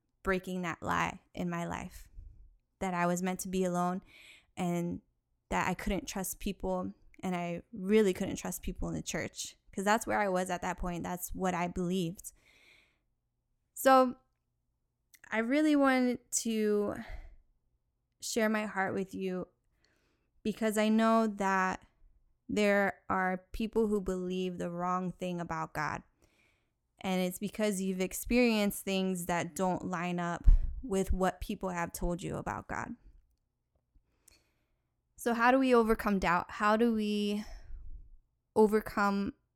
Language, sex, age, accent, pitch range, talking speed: English, female, 10-29, American, 175-210 Hz, 140 wpm